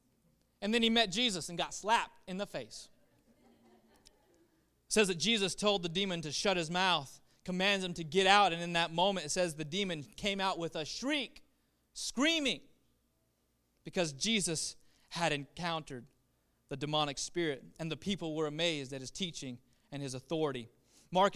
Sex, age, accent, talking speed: male, 20-39, American, 170 wpm